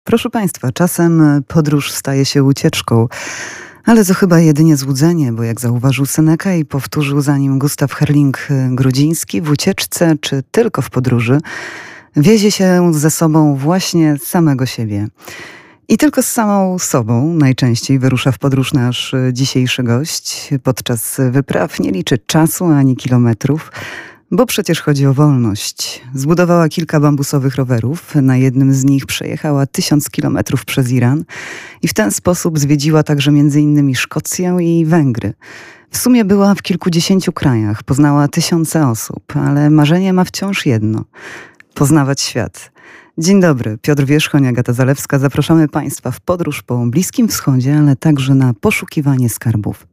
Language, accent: Polish, native